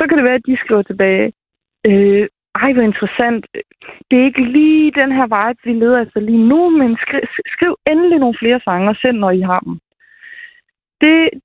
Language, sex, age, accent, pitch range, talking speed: Danish, female, 20-39, native, 220-270 Hz, 190 wpm